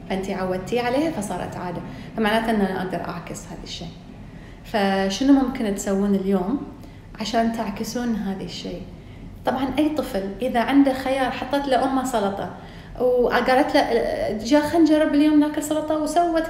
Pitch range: 200-280 Hz